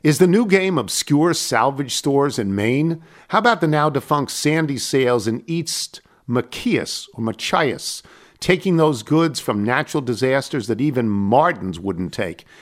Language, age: English, 50-69